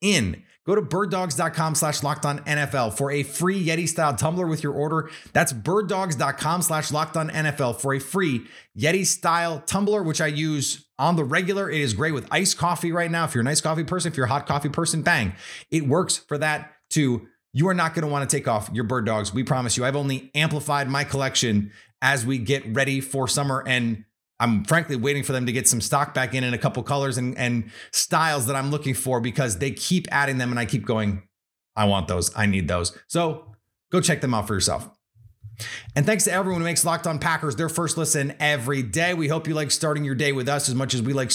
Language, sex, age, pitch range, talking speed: English, male, 30-49, 130-165 Hz, 230 wpm